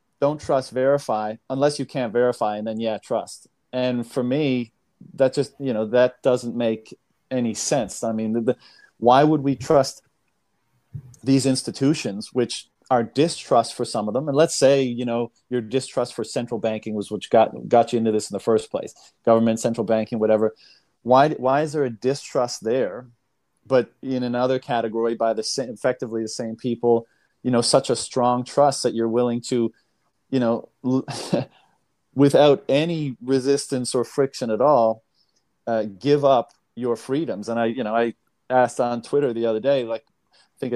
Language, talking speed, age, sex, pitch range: English, 175 wpm, 40-59, male, 115-135 Hz